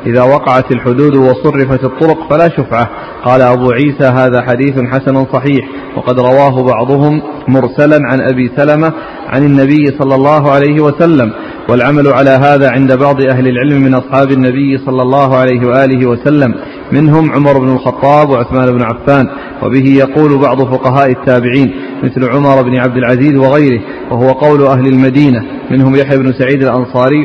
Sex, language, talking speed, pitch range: male, Arabic, 150 wpm, 130-145 Hz